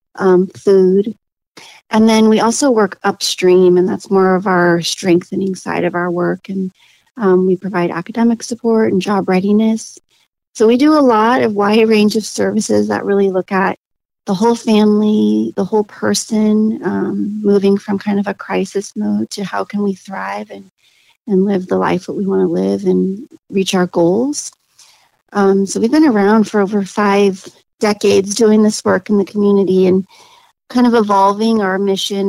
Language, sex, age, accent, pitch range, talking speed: English, female, 40-59, American, 180-215 Hz, 175 wpm